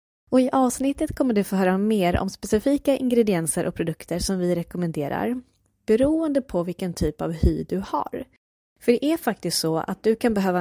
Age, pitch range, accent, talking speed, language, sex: 20-39, 175-235 Hz, native, 185 wpm, Swedish, female